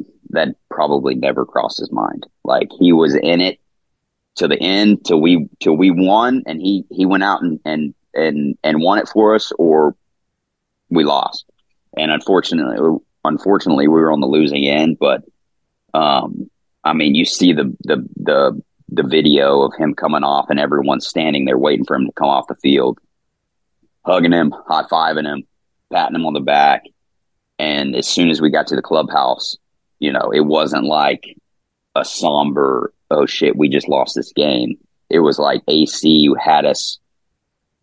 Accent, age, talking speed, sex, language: American, 30-49, 175 wpm, male, English